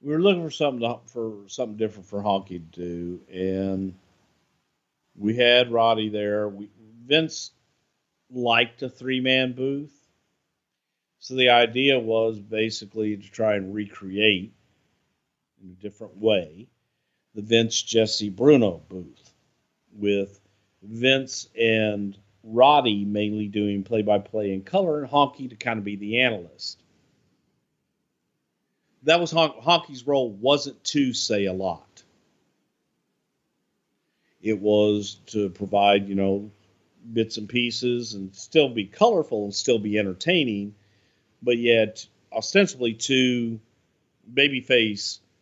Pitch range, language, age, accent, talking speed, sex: 100-125 Hz, English, 50-69, American, 120 wpm, male